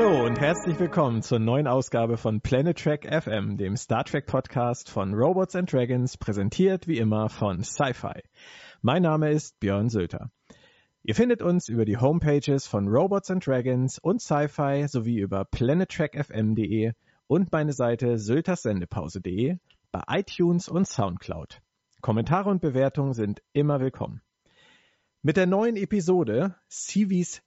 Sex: male